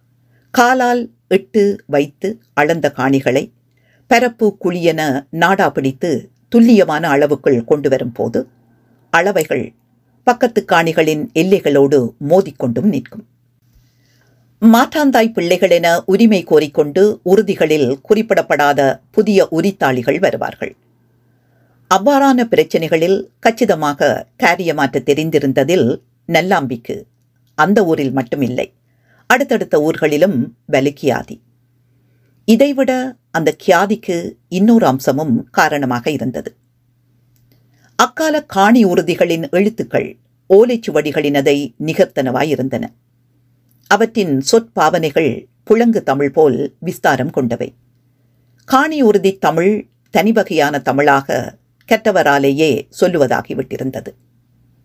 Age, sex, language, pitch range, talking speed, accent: 50-69, female, Tamil, 125-200 Hz, 75 wpm, native